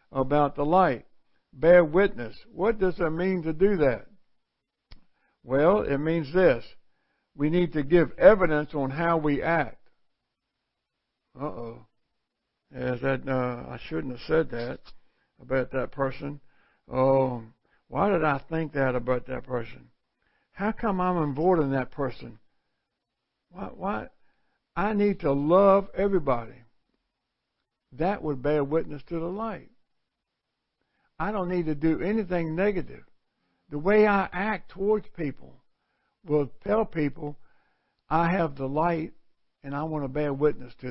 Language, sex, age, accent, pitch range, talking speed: English, male, 60-79, American, 135-175 Hz, 130 wpm